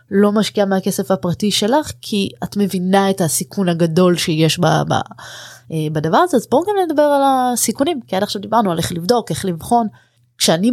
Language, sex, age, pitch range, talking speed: Hebrew, female, 20-39, 160-205 Hz, 180 wpm